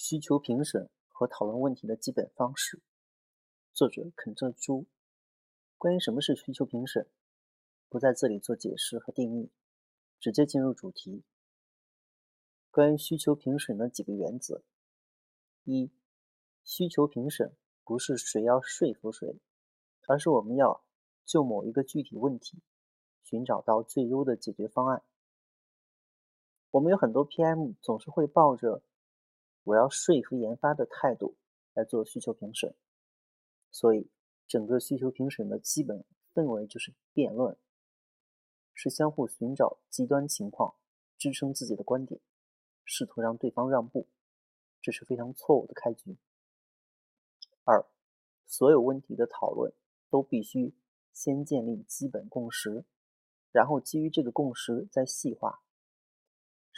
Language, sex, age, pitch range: Chinese, male, 30-49, 115-150 Hz